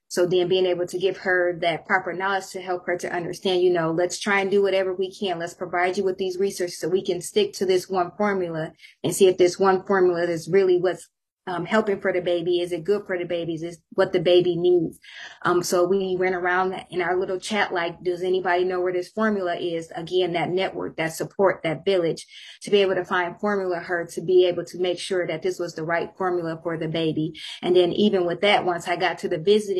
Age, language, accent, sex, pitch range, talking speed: 20-39, English, American, female, 175-190 Hz, 240 wpm